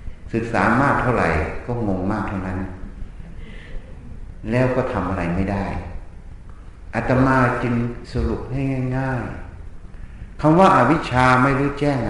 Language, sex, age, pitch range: Thai, male, 60-79, 95-140 Hz